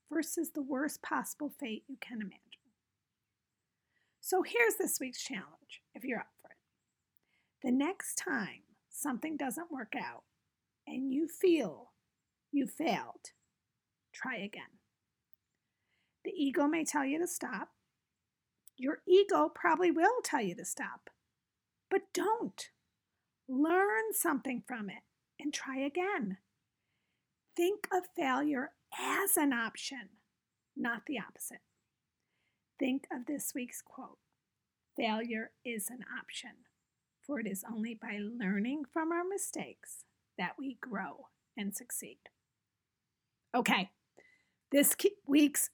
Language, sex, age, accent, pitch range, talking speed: English, female, 40-59, American, 235-315 Hz, 120 wpm